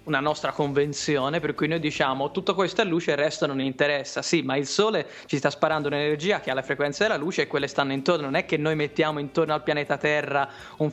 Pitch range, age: 140-170 Hz, 20-39